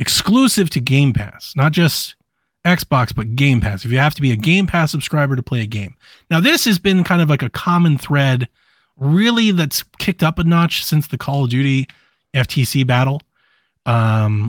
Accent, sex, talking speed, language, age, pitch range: American, male, 195 wpm, English, 30-49, 120-155 Hz